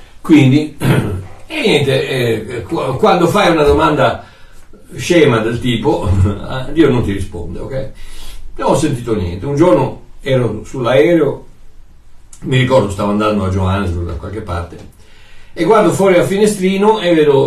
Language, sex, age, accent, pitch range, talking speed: Italian, male, 60-79, native, 105-180 Hz, 140 wpm